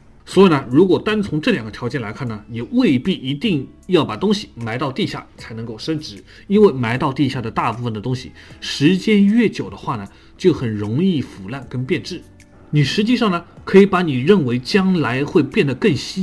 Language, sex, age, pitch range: Chinese, male, 30-49, 120-175 Hz